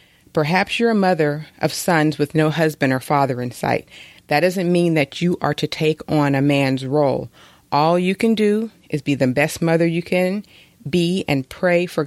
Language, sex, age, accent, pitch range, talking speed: English, female, 30-49, American, 145-175 Hz, 200 wpm